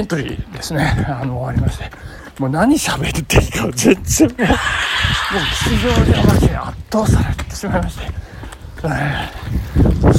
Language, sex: Japanese, male